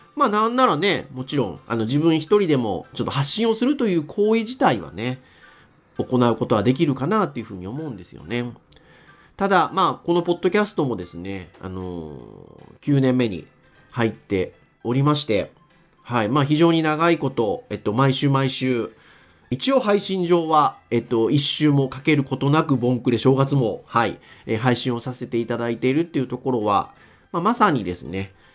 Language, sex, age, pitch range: Japanese, male, 40-59, 105-170 Hz